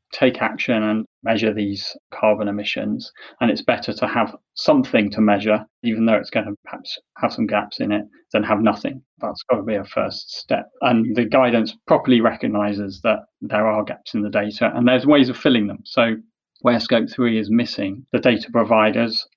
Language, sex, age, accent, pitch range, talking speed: English, male, 30-49, British, 105-120 Hz, 195 wpm